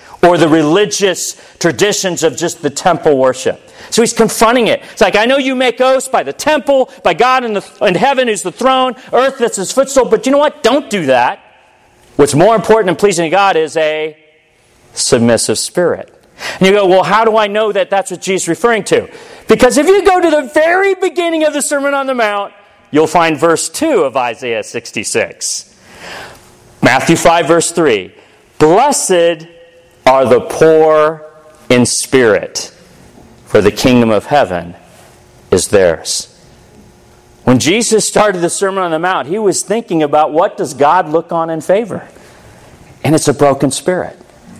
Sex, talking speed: male, 175 wpm